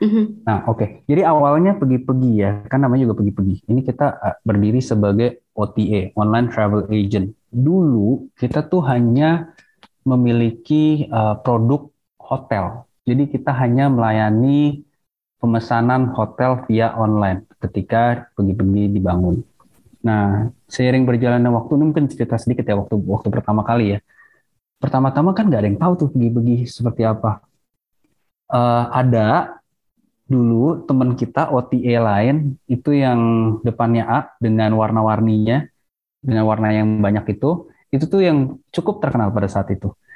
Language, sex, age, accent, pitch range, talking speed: Indonesian, male, 20-39, native, 110-140 Hz, 130 wpm